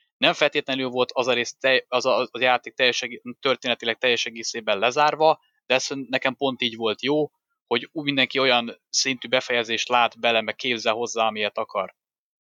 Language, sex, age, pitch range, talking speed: Hungarian, male, 20-39, 120-140 Hz, 160 wpm